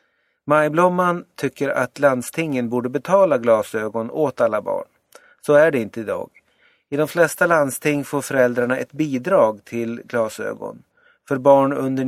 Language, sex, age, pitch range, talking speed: Swedish, male, 30-49, 120-170 Hz, 140 wpm